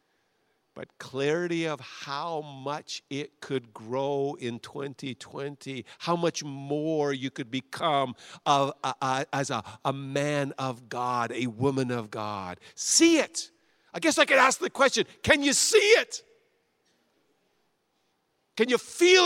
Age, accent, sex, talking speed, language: 50-69, American, male, 135 wpm, English